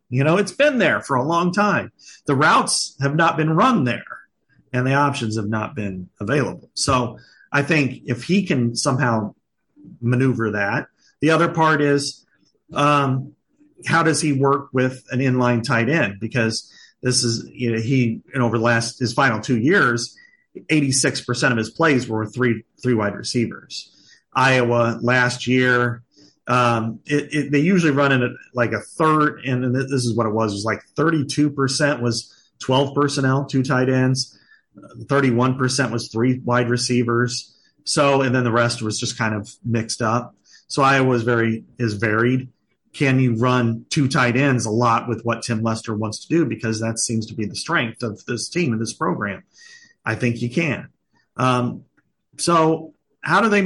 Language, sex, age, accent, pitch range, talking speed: English, male, 40-59, American, 115-150 Hz, 175 wpm